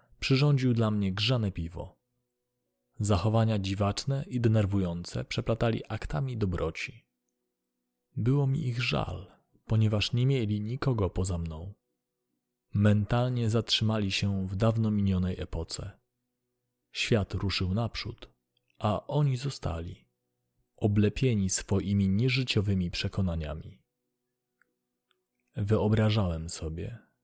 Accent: native